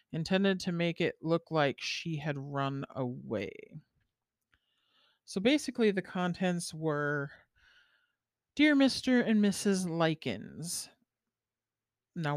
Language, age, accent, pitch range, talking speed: English, 40-59, American, 150-195 Hz, 100 wpm